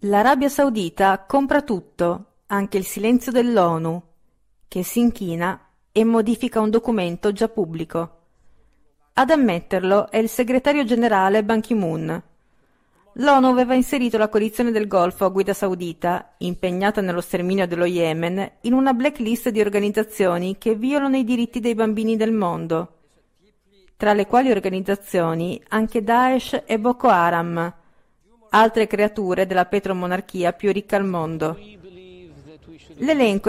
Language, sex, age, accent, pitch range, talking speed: Italian, female, 40-59, native, 180-235 Hz, 125 wpm